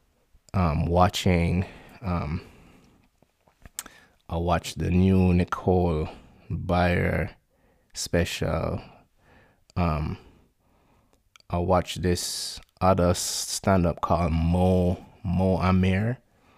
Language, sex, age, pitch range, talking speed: English, male, 20-39, 85-100 Hz, 70 wpm